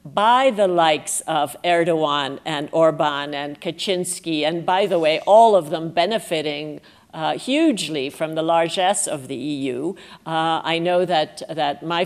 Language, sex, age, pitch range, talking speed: English, female, 50-69, 170-205 Hz, 155 wpm